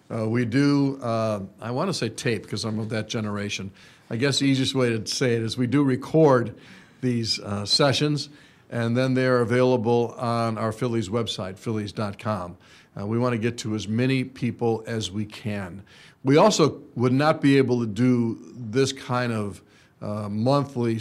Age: 50-69